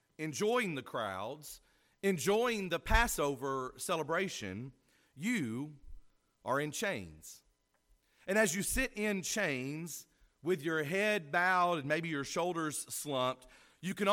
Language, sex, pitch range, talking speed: English, male, 155-205 Hz, 120 wpm